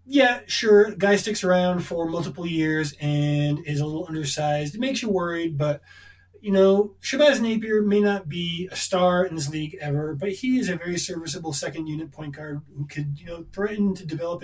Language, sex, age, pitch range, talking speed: English, male, 20-39, 145-190 Hz, 195 wpm